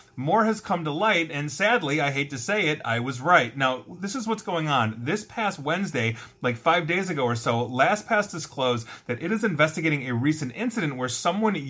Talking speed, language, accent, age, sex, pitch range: 210 wpm, English, American, 30-49, male, 120-170 Hz